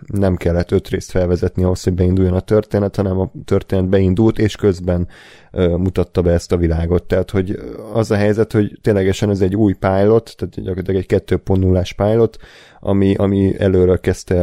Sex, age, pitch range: male, 30-49, 90-105 Hz